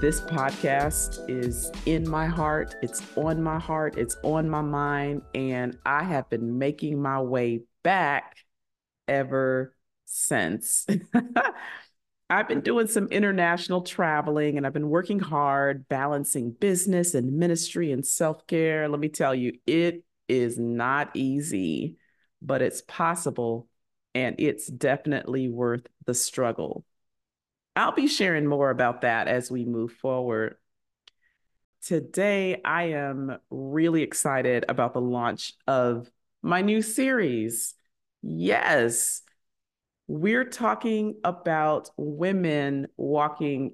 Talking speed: 120 wpm